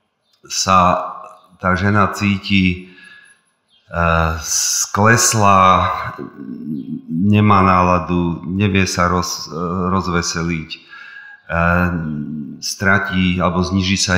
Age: 40-59